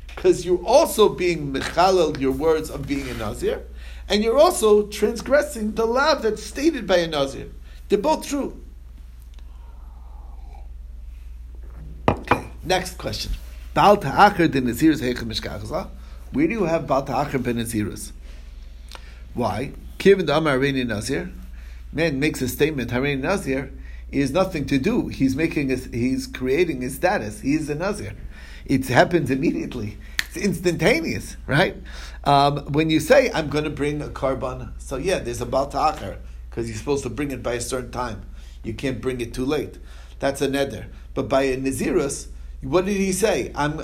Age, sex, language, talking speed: 60-79, male, English, 140 wpm